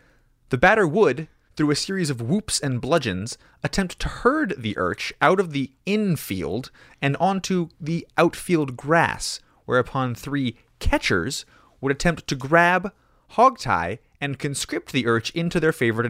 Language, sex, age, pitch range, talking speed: English, male, 30-49, 120-165 Hz, 145 wpm